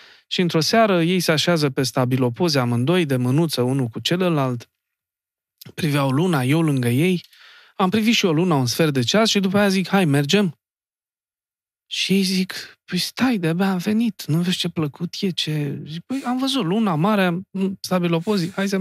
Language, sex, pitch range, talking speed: Romanian, male, 135-200 Hz, 180 wpm